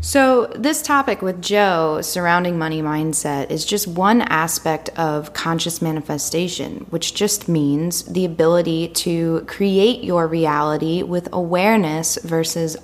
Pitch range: 160-205 Hz